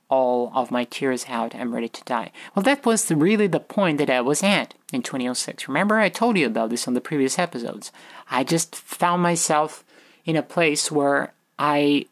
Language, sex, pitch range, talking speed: English, male, 130-170 Hz, 200 wpm